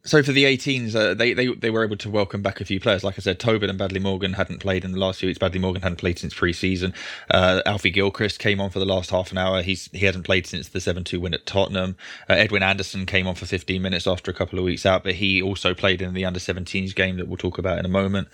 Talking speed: 285 wpm